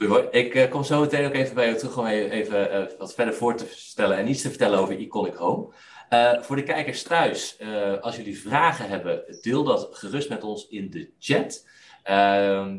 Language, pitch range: Dutch, 90-120 Hz